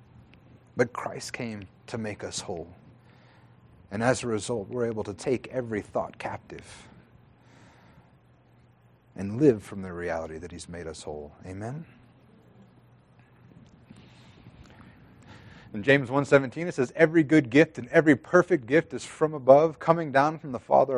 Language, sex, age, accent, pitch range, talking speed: English, male, 30-49, American, 110-150 Hz, 140 wpm